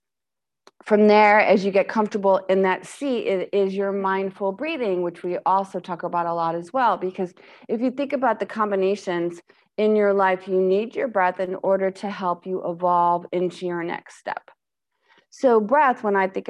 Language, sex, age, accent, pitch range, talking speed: English, female, 30-49, American, 180-235 Hz, 190 wpm